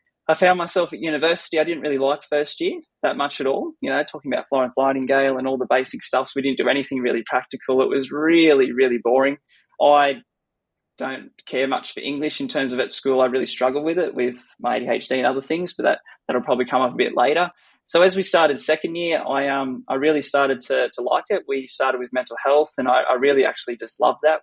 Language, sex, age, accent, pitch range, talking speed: English, male, 20-39, Australian, 130-155 Hz, 240 wpm